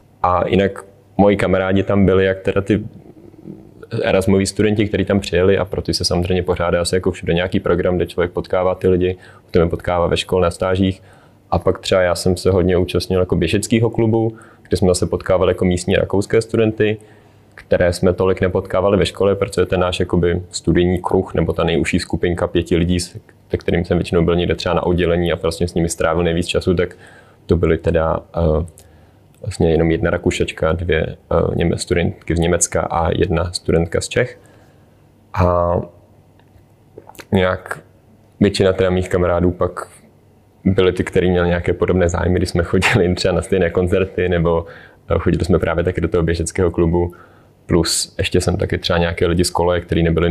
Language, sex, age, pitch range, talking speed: Czech, male, 20-39, 85-100 Hz, 175 wpm